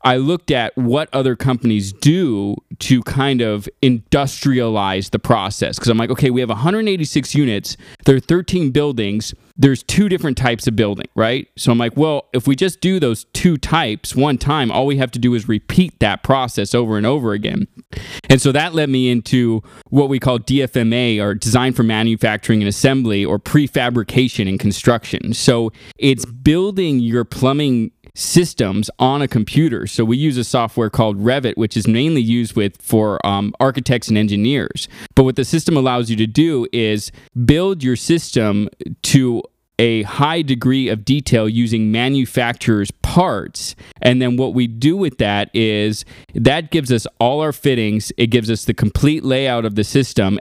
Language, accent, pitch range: English, American, 110-135 Hz